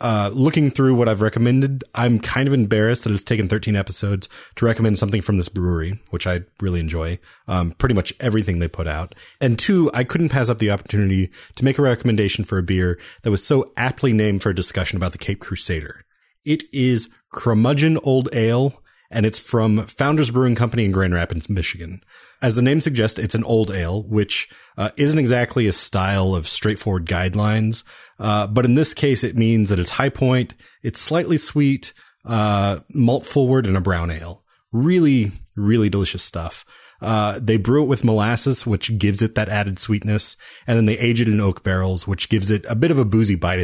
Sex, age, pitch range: male, 30-49, 100-130 Hz